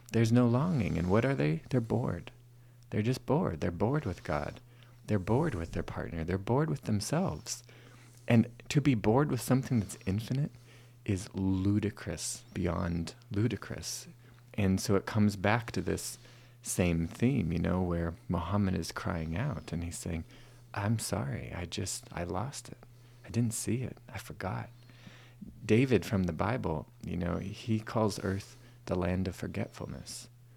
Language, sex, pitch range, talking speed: English, male, 95-120 Hz, 160 wpm